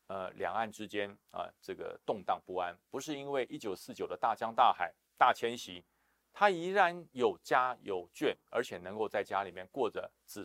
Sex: male